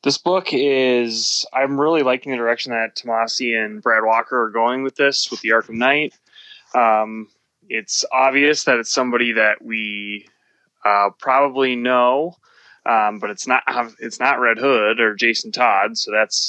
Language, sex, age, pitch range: English, male, 20-39, 105-125 Hz